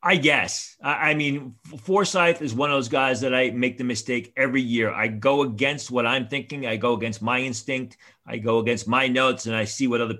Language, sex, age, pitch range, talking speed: English, male, 40-59, 120-140 Hz, 225 wpm